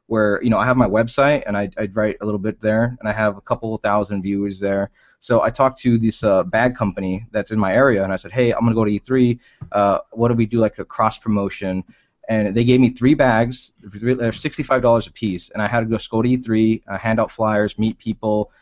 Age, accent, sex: 20-39, American, male